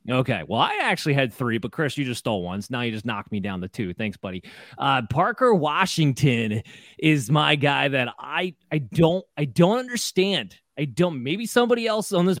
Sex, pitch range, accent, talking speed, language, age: male, 135-180 Hz, American, 205 wpm, English, 20-39